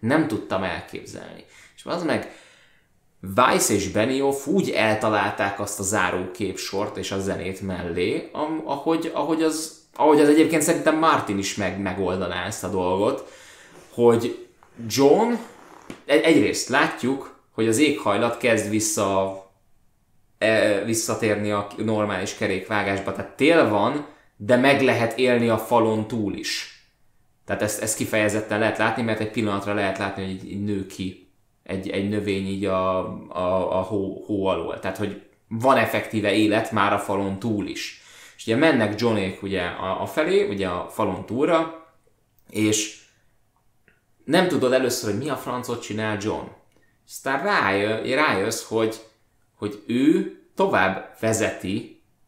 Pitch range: 100-120 Hz